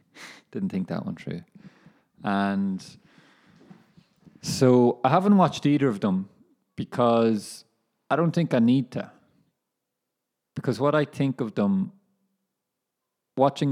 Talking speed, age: 120 wpm, 20-39